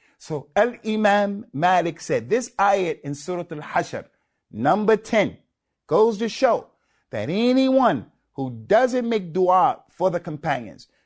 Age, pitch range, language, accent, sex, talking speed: 50-69, 145-215 Hz, English, American, male, 125 wpm